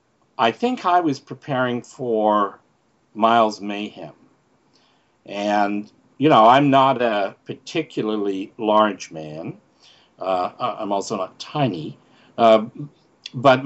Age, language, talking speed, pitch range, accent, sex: 60-79, English, 105 wpm, 100-130 Hz, American, male